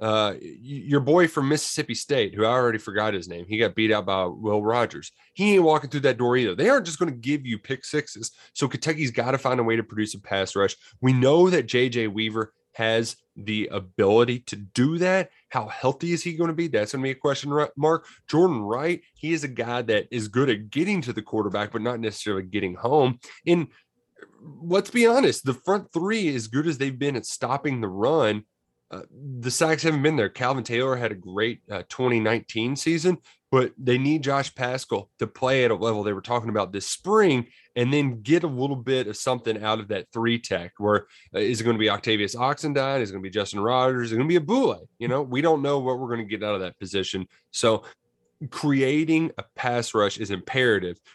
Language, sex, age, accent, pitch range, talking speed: English, male, 20-39, American, 110-145 Hz, 225 wpm